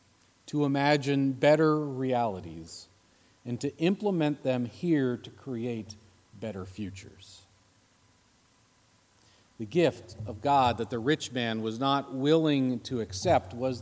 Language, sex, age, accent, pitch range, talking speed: English, male, 40-59, American, 105-145 Hz, 115 wpm